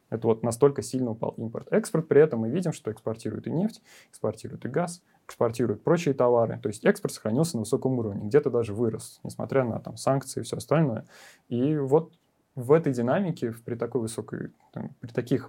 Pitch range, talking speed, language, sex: 110-140 Hz, 195 wpm, Russian, male